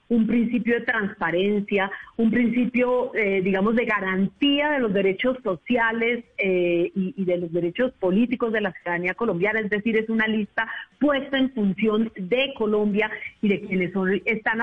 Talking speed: 160 wpm